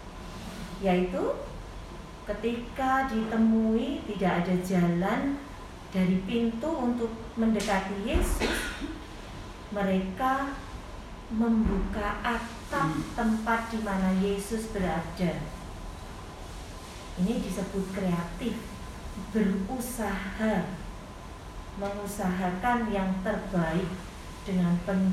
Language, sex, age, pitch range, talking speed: Indonesian, female, 40-59, 175-230 Hz, 65 wpm